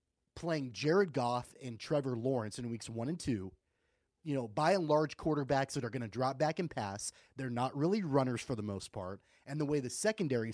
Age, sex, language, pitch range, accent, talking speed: 30-49, male, English, 125-155 Hz, American, 215 wpm